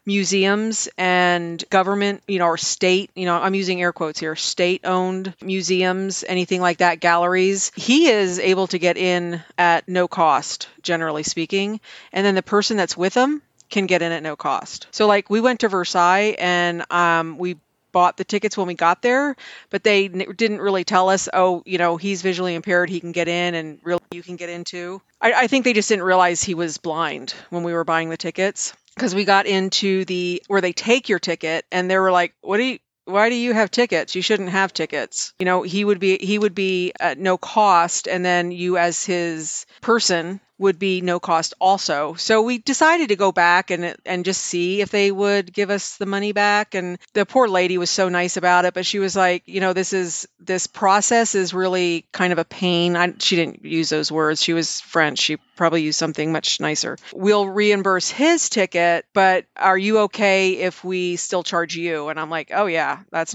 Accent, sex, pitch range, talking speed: American, female, 175-200 Hz, 210 wpm